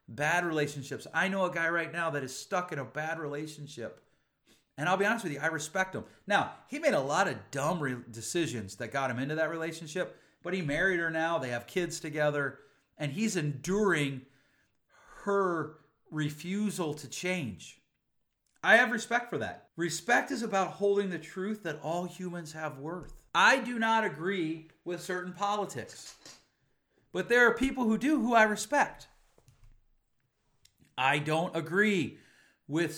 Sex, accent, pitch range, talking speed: male, American, 145-190 Hz, 165 wpm